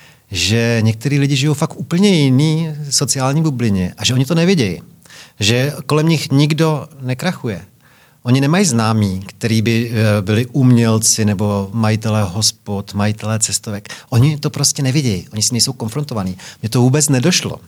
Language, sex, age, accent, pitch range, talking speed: Czech, male, 40-59, native, 110-145 Hz, 150 wpm